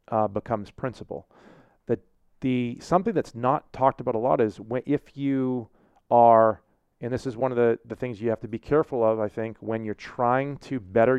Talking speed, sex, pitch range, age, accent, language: 205 wpm, male, 110-135 Hz, 40-59, American, English